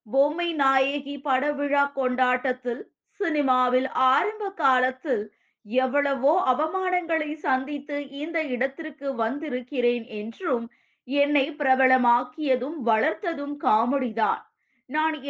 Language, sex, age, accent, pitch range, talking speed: Tamil, female, 20-39, native, 250-295 Hz, 75 wpm